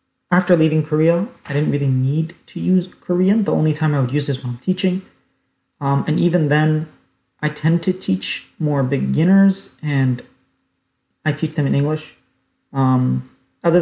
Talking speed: 165 wpm